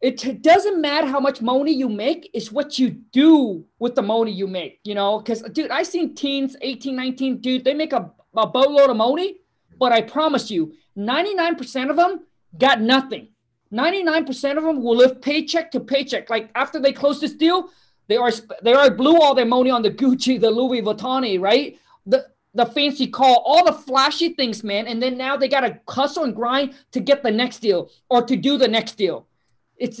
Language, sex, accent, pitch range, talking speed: English, male, American, 240-310 Hz, 205 wpm